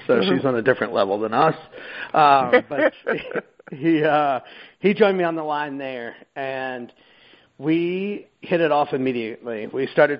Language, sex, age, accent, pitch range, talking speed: English, male, 40-59, American, 115-140 Hz, 165 wpm